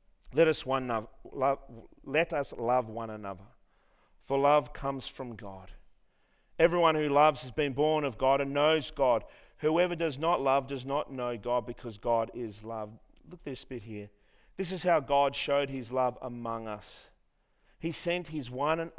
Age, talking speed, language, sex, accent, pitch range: 40-59, 180 wpm, English, male, Australian, 110-140 Hz